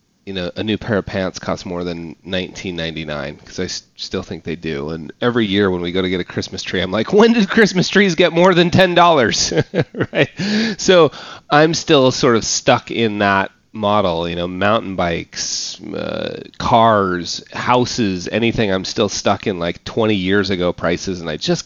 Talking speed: 185 wpm